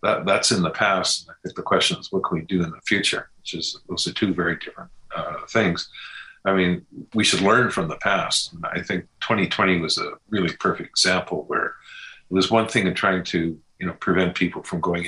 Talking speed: 230 wpm